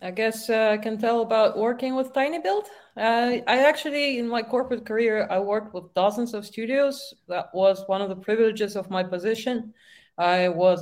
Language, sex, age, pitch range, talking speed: English, female, 20-39, 180-245 Hz, 185 wpm